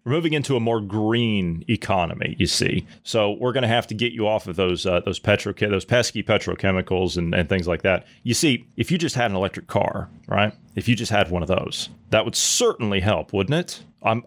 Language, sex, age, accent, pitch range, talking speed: English, male, 30-49, American, 105-145 Hz, 230 wpm